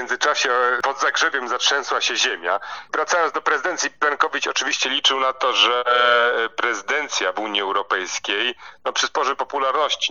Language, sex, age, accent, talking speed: Polish, male, 40-59, native, 135 wpm